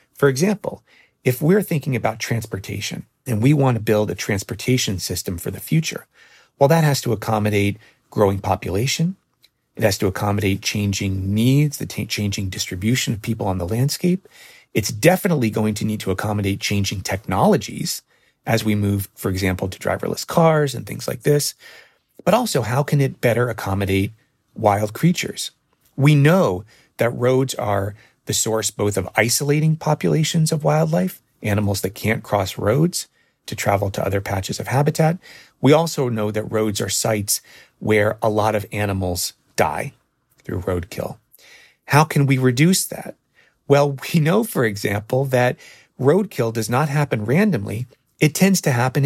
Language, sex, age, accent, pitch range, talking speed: English, male, 30-49, American, 105-150 Hz, 155 wpm